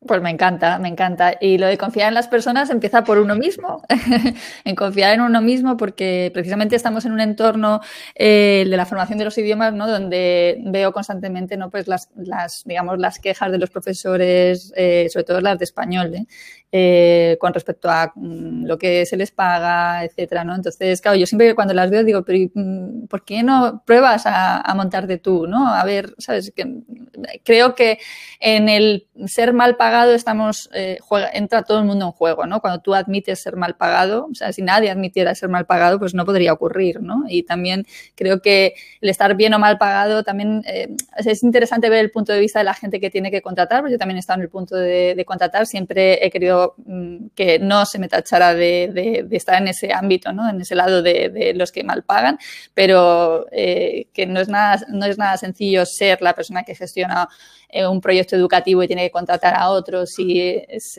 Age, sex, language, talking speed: 20-39, female, Spanish, 205 wpm